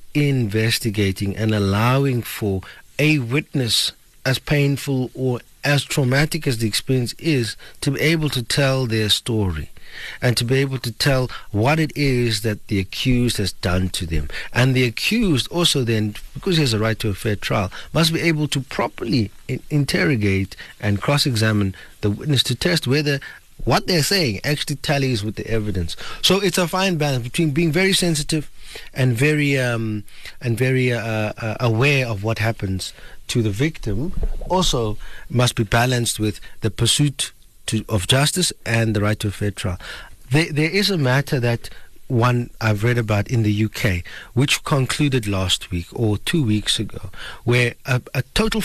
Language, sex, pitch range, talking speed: English, male, 110-145 Hz, 170 wpm